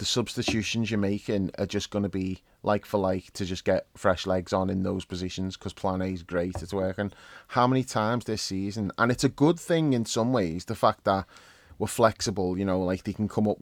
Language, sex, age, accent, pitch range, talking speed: English, male, 30-49, British, 100-120 Hz, 240 wpm